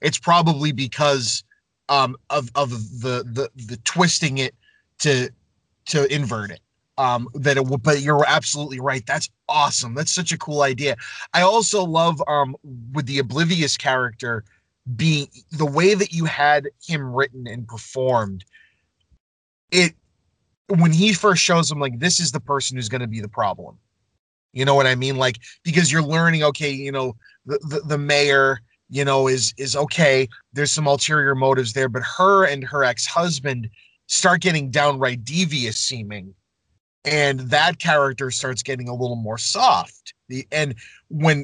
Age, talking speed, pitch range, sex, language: 30-49, 165 wpm, 130-165 Hz, male, English